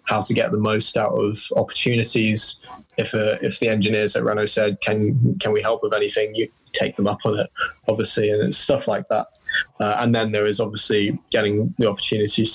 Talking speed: 205 wpm